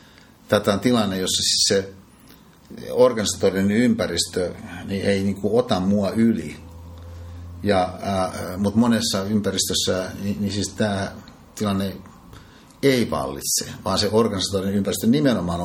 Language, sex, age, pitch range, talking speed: Finnish, male, 50-69, 90-105 Hz, 115 wpm